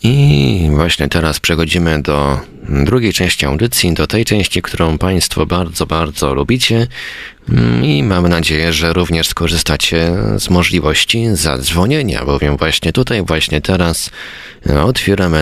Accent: native